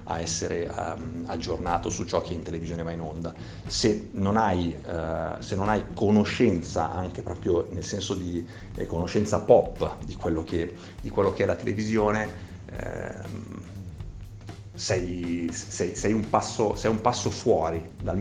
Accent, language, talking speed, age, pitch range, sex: native, Italian, 155 wpm, 50-69, 85-105 Hz, male